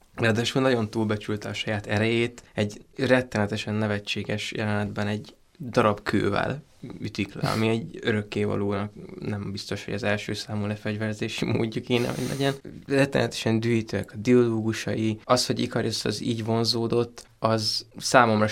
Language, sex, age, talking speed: Hungarian, male, 20-39, 135 wpm